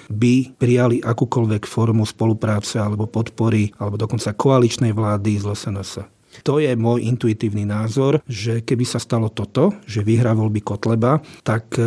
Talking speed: 140 wpm